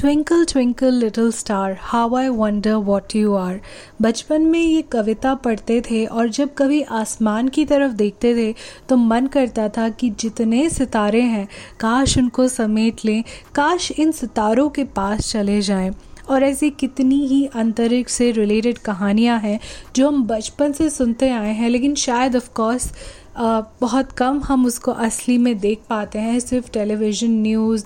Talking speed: 165 wpm